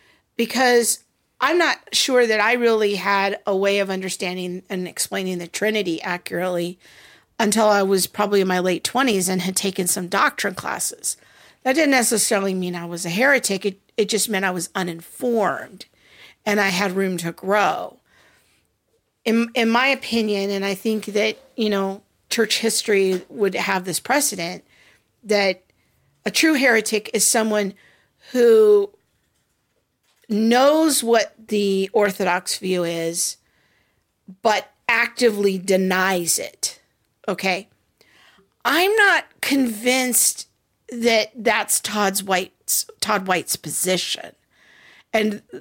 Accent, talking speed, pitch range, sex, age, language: American, 130 wpm, 185-235 Hz, female, 50-69, English